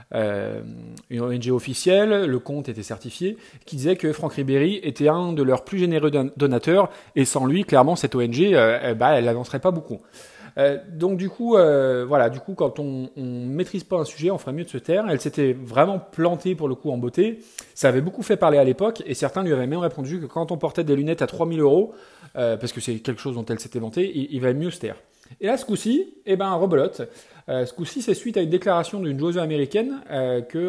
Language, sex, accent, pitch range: French, male, French, 130-185 Hz